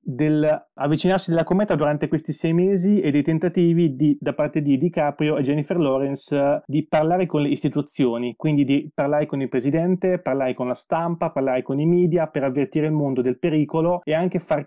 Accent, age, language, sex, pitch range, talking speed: native, 30-49, Italian, male, 135-170 Hz, 190 wpm